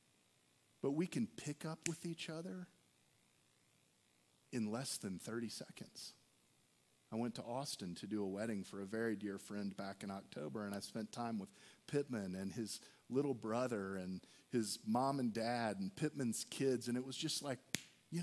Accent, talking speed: American, 175 wpm